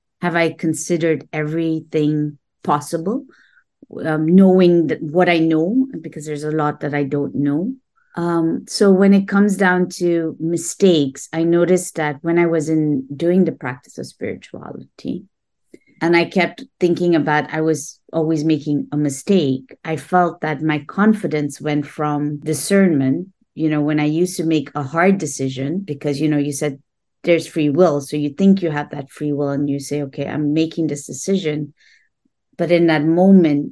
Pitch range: 145-175 Hz